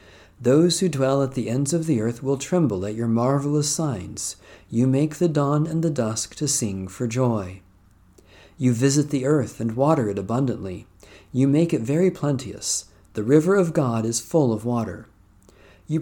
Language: English